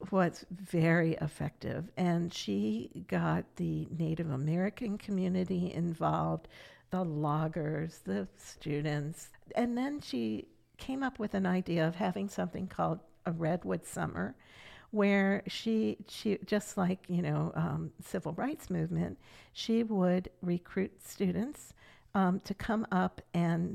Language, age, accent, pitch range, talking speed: English, 50-69, American, 160-195 Hz, 125 wpm